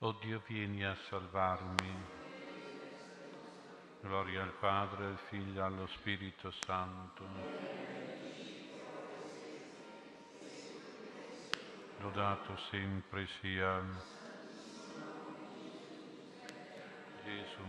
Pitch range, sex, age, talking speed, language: 95-100 Hz, male, 50-69, 60 wpm, Italian